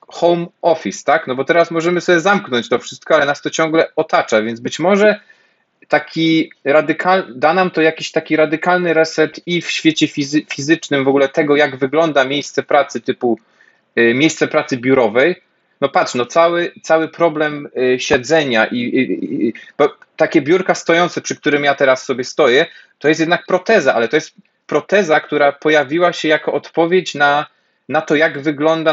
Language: Polish